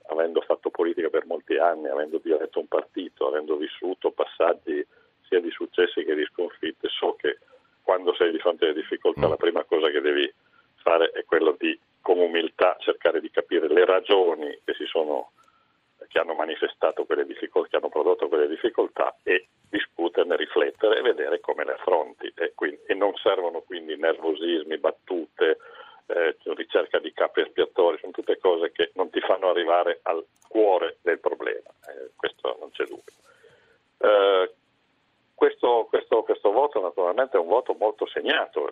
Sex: male